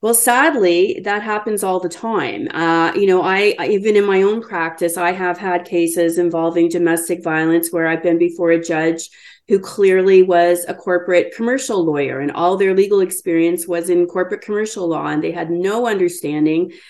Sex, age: female, 30-49